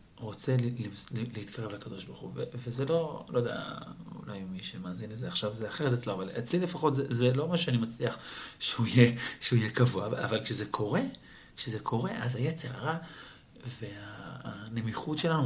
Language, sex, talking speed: Hebrew, male, 160 wpm